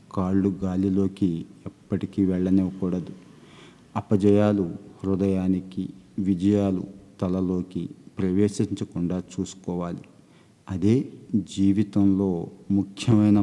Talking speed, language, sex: 60 wpm, Telugu, male